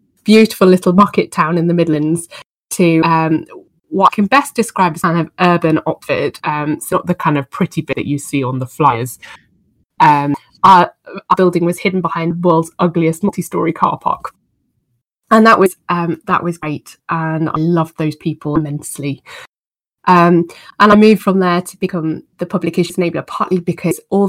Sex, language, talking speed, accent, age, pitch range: female, English, 180 wpm, British, 20-39, 160-185 Hz